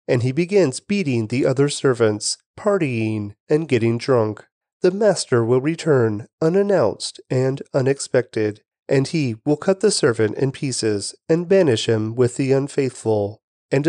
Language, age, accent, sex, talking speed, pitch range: English, 30-49, American, male, 145 wpm, 115-175 Hz